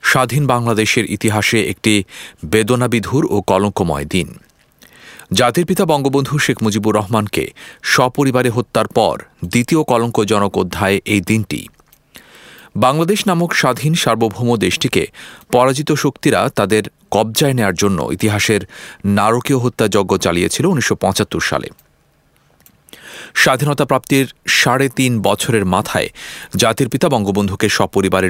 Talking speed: 100 wpm